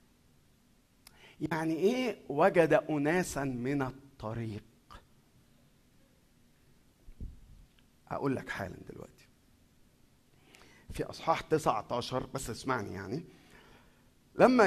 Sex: male